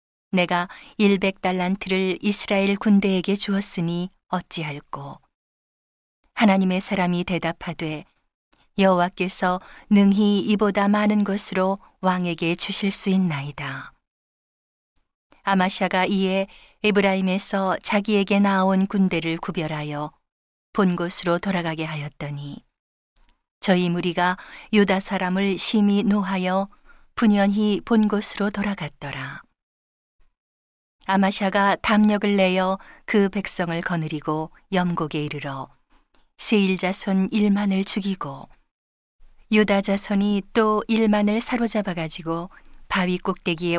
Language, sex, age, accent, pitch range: Korean, female, 40-59, native, 175-205 Hz